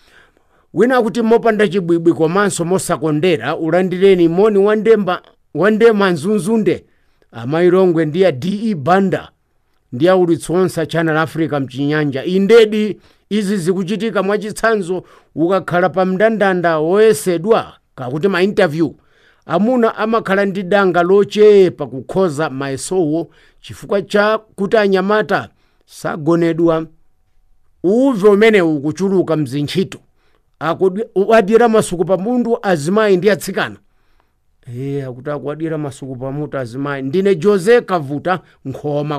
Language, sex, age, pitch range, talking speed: English, male, 50-69, 155-210 Hz, 105 wpm